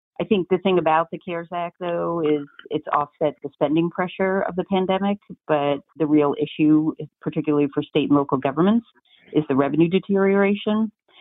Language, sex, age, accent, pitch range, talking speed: English, female, 40-59, American, 140-170 Hz, 175 wpm